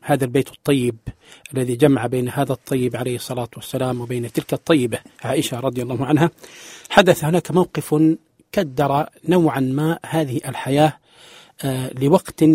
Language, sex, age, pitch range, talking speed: English, male, 40-59, 130-155 Hz, 130 wpm